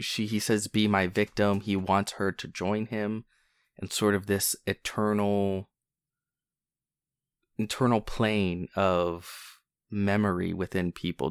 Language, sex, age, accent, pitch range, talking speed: English, male, 20-39, American, 95-125 Hz, 120 wpm